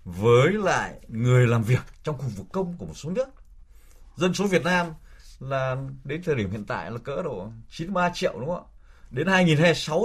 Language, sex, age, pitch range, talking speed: Vietnamese, male, 20-39, 105-160 Hz, 195 wpm